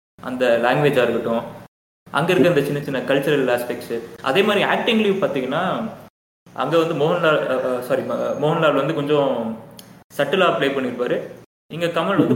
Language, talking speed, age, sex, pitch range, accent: Tamil, 135 wpm, 20-39, male, 130-175 Hz, native